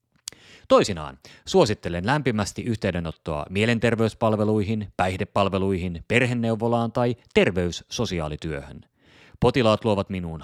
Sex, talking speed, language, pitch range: male, 70 wpm, Finnish, 95-130 Hz